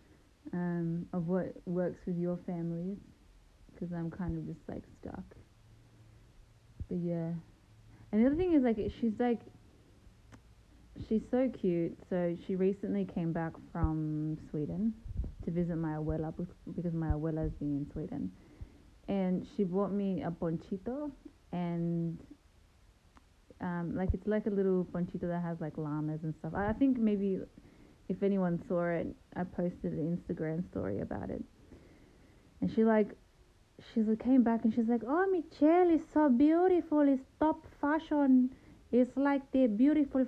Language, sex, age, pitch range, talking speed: English, female, 20-39, 165-235 Hz, 150 wpm